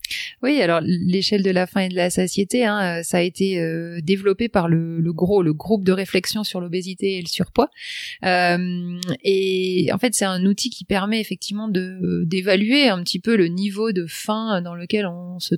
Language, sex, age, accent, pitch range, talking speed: French, female, 30-49, French, 165-205 Hz, 200 wpm